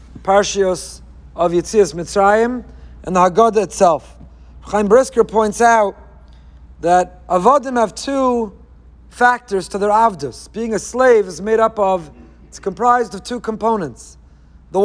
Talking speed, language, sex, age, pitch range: 135 wpm, English, male, 40-59, 190-245 Hz